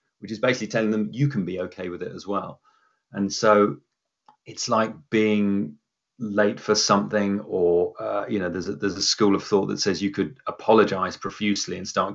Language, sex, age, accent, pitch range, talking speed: English, male, 30-49, British, 95-120 Hz, 200 wpm